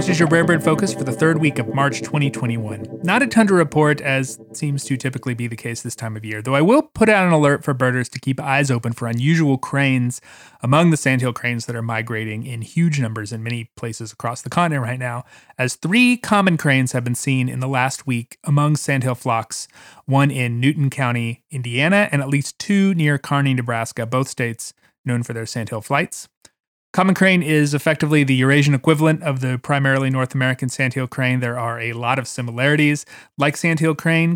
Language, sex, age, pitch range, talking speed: English, male, 30-49, 120-150 Hz, 210 wpm